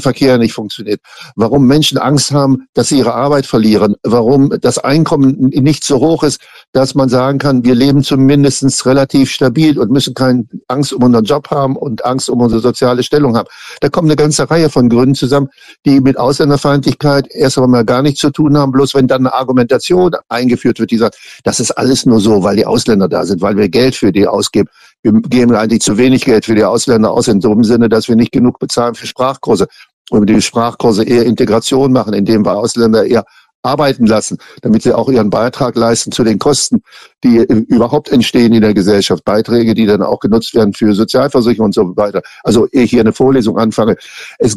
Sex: male